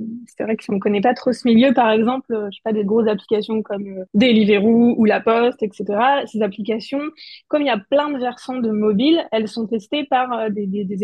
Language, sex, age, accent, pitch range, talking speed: French, female, 20-39, French, 215-255 Hz, 235 wpm